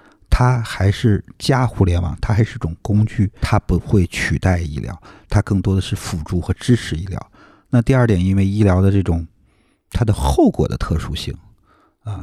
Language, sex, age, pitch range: Chinese, male, 50-69, 90-105 Hz